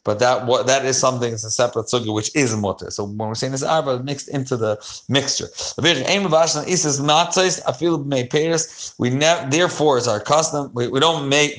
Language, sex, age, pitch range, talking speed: English, male, 30-49, 120-150 Hz, 165 wpm